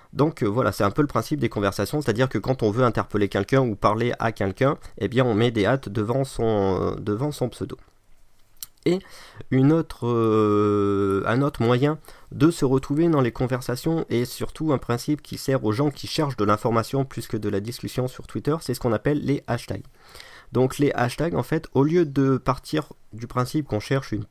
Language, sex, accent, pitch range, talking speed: French, male, French, 105-135 Hz, 205 wpm